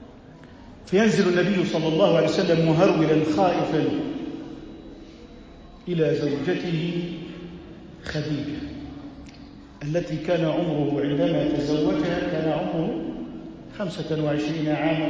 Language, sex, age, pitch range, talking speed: Arabic, male, 50-69, 150-215 Hz, 80 wpm